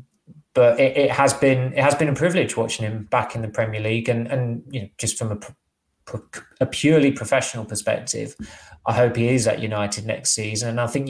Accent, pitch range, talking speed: British, 110-120 Hz, 205 wpm